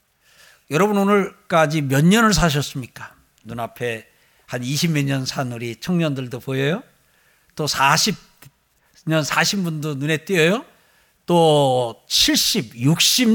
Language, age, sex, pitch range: Korean, 60-79, male, 140-185 Hz